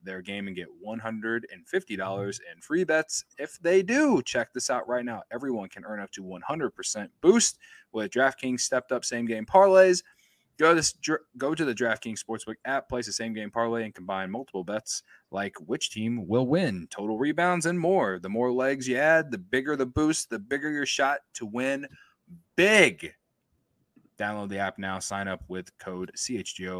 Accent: American